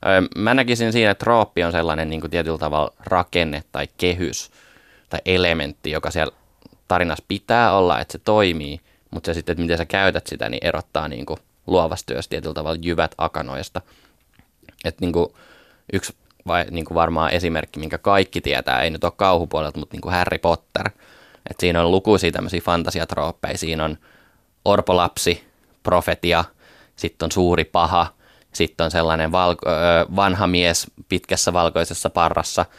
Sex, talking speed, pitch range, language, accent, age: male, 145 wpm, 80-95 Hz, Finnish, native, 20-39